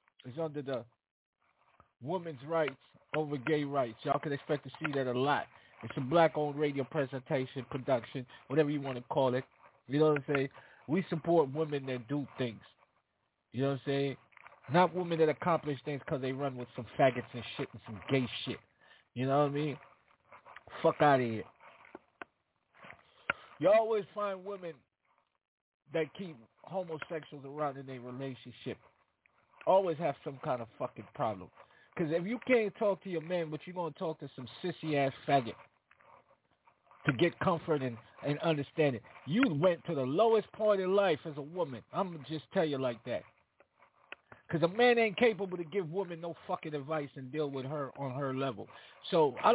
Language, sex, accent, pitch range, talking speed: English, male, American, 135-175 Hz, 185 wpm